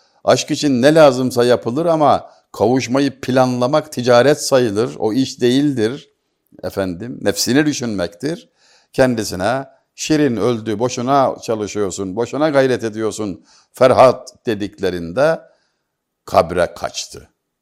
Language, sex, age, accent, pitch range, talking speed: Turkish, male, 60-79, native, 100-135 Hz, 95 wpm